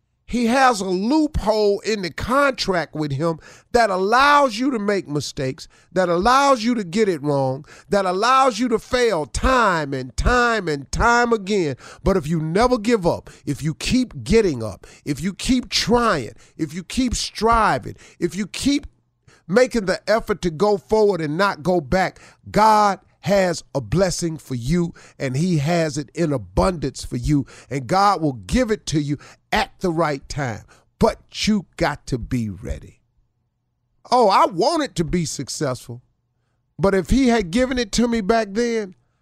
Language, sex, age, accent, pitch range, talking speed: English, male, 50-69, American, 120-200 Hz, 170 wpm